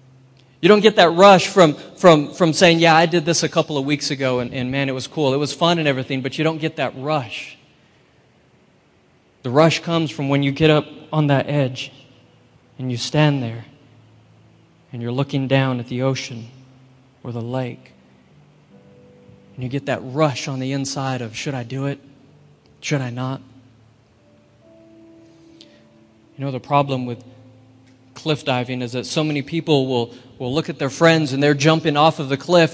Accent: American